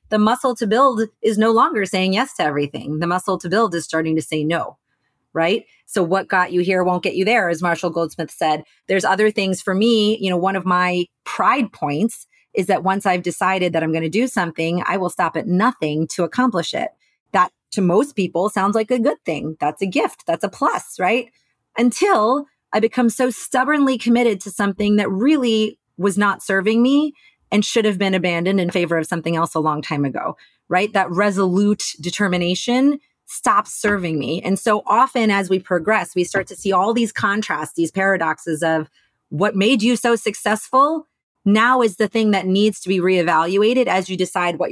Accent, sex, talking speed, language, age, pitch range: American, female, 200 wpm, English, 30-49, 170-220 Hz